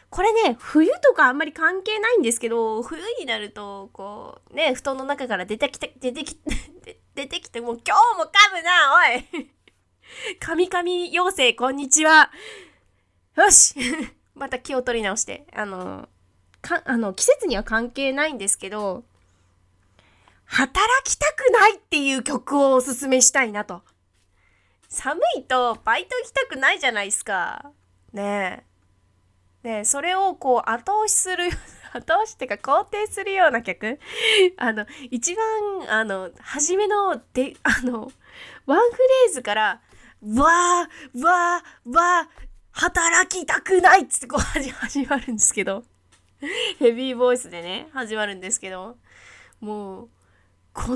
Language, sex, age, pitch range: Japanese, female, 20-39, 215-350 Hz